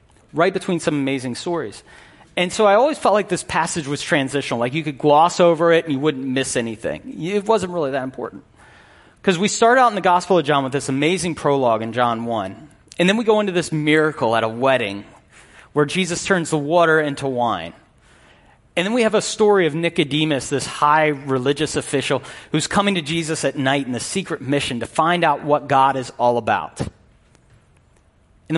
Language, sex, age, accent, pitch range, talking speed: English, male, 30-49, American, 135-180 Hz, 200 wpm